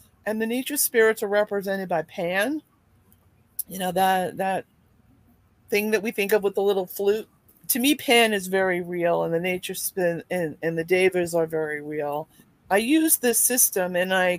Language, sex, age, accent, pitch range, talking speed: English, female, 40-59, American, 175-220 Hz, 185 wpm